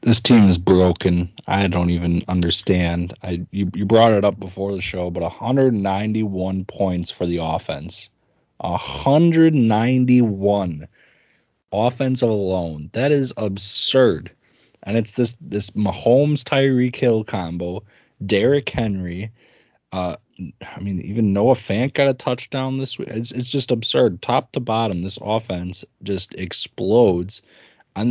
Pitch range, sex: 95-125 Hz, male